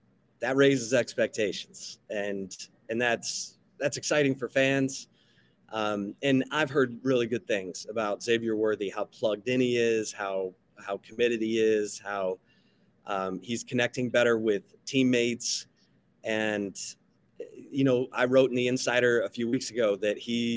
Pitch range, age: 110-125 Hz, 30-49